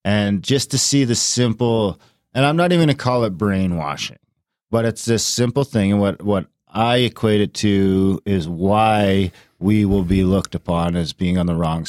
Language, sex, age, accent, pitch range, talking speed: English, male, 40-59, American, 100-120 Hz, 195 wpm